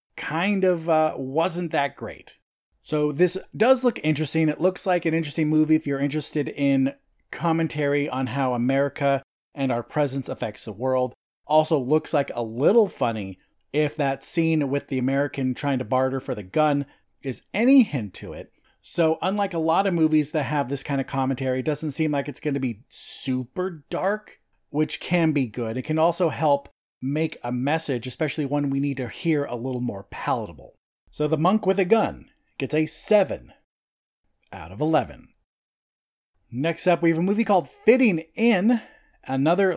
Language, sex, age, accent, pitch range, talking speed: English, male, 30-49, American, 140-180 Hz, 180 wpm